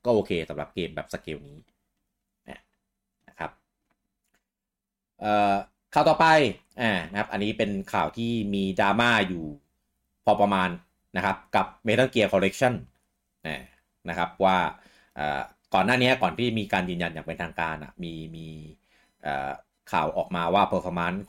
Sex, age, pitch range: male, 30-49, 85-130 Hz